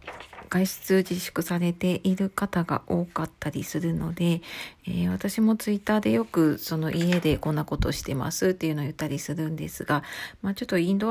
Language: Japanese